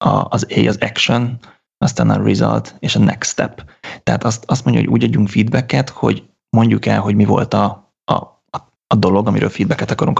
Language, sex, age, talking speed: Hungarian, male, 20-39, 190 wpm